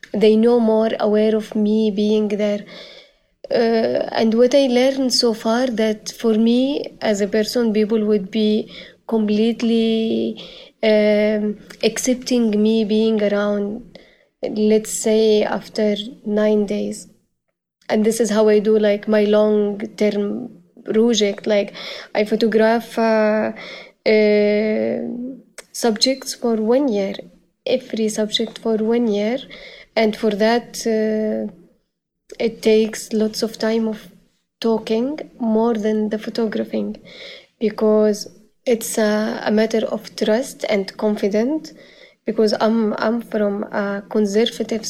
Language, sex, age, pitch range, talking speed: French, female, 20-39, 210-230 Hz, 120 wpm